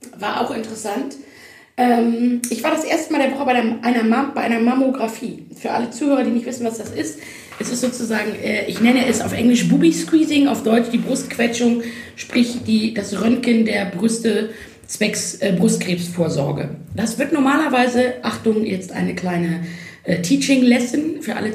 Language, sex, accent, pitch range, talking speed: German, female, German, 175-245 Hz, 155 wpm